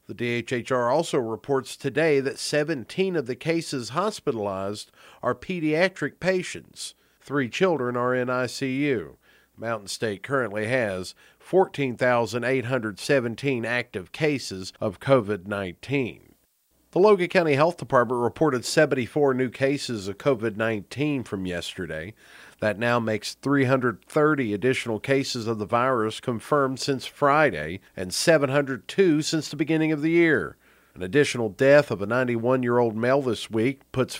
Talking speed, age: 130 wpm, 50-69